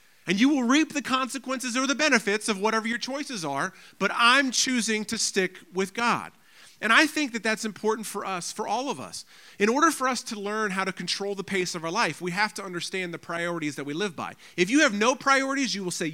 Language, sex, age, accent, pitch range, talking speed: English, male, 40-59, American, 190-235 Hz, 240 wpm